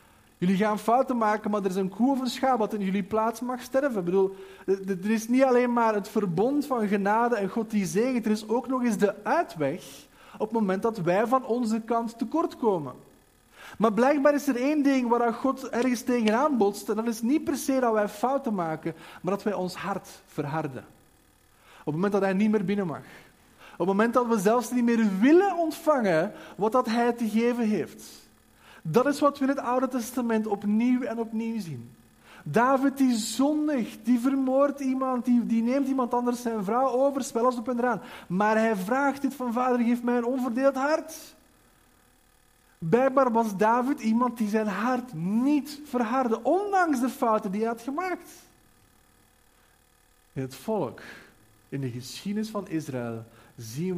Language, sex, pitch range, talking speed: Dutch, male, 195-255 Hz, 185 wpm